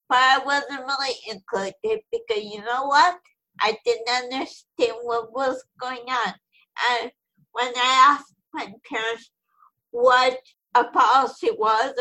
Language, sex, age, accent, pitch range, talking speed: English, female, 50-69, American, 220-275 Hz, 130 wpm